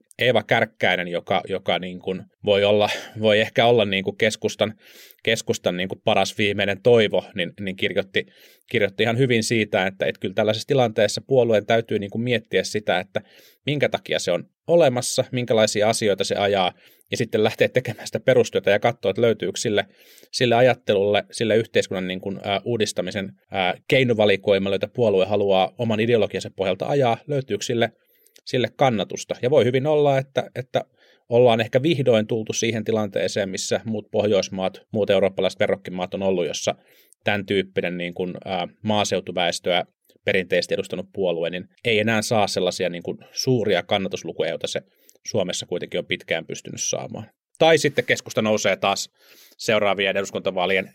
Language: Finnish